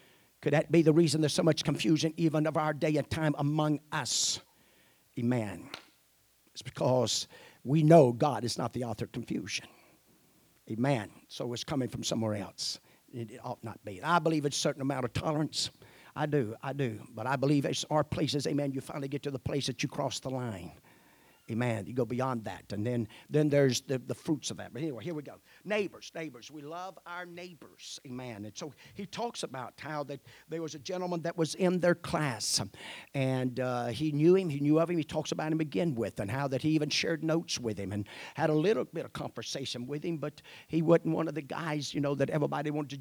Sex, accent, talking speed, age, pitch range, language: male, American, 220 wpm, 50-69, 125-155 Hz, English